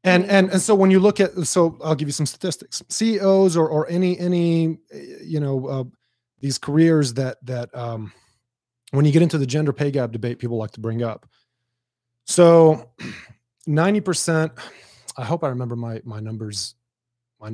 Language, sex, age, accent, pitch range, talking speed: English, male, 30-49, American, 120-160 Hz, 175 wpm